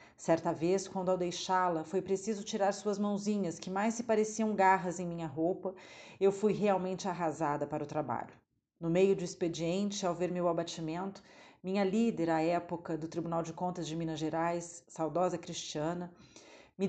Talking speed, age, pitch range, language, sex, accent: 165 wpm, 40-59, 165-195 Hz, Portuguese, female, Brazilian